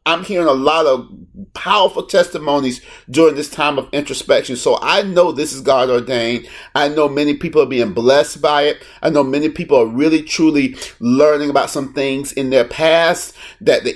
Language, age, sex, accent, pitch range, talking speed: English, 40-59, male, American, 145-195 Hz, 190 wpm